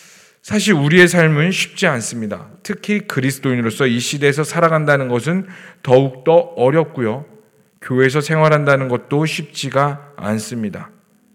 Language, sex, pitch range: Korean, male, 125-175 Hz